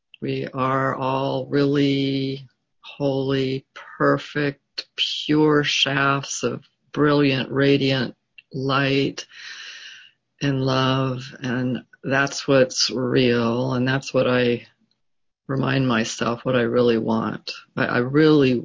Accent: American